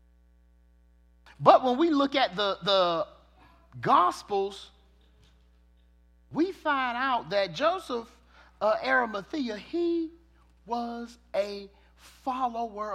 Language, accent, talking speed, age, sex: English, American, 90 wpm, 40-59, male